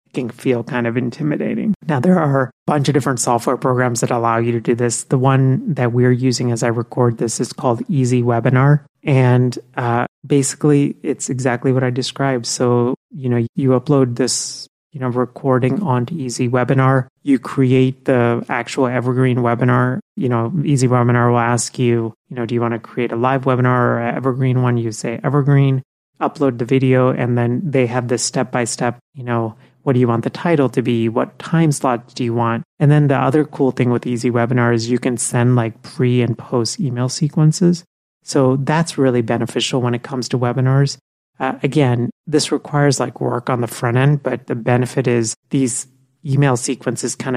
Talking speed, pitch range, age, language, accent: 195 wpm, 120-135 Hz, 30-49, English, American